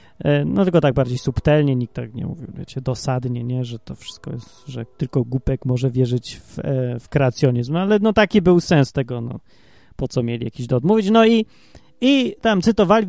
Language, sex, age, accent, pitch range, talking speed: Polish, male, 30-49, native, 135-195 Hz, 195 wpm